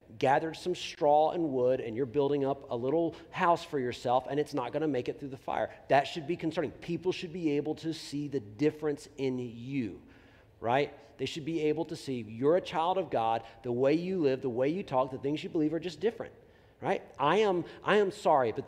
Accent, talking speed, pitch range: American, 235 wpm, 135-185 Hz